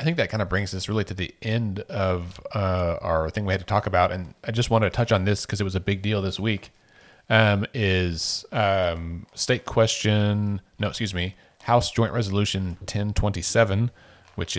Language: English